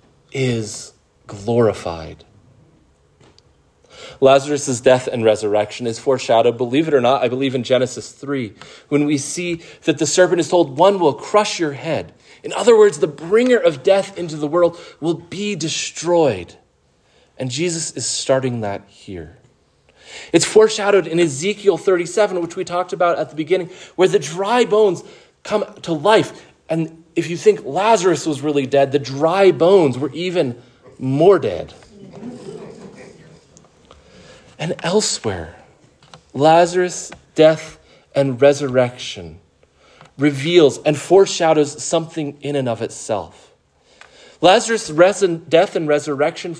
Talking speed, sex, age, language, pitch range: 130 wpm, male, 30-49, English, 140-180 Hz